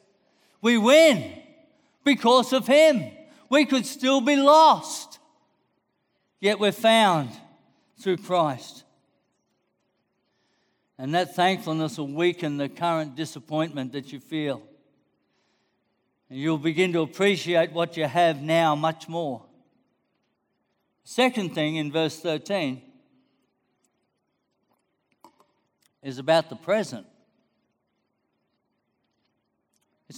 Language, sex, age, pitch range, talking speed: English, male, 60-79, 160-210 Hz, 95 wpm